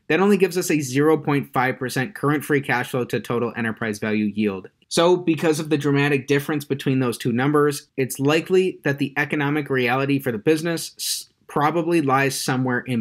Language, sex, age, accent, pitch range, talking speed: English, male, 30-49, American, 125-155 Hz, 175 wpm